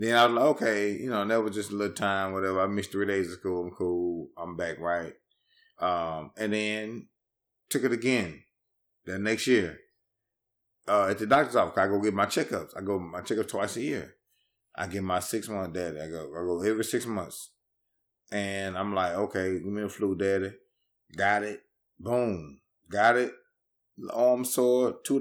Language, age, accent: English, 30-49, American